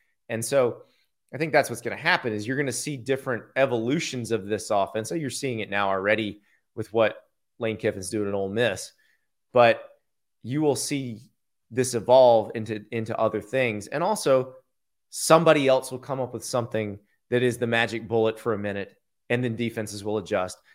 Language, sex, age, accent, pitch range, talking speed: English, male, 30-49, American, 110-130 Hz, 190 wpm